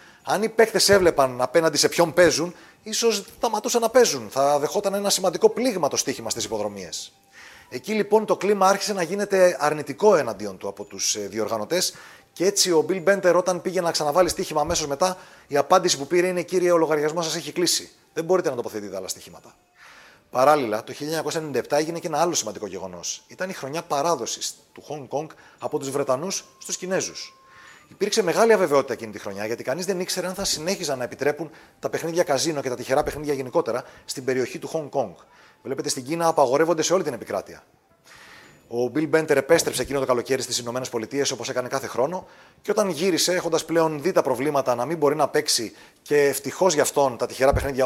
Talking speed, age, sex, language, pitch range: 190 wpm, 30-49, male, Greek, 135-185 Hz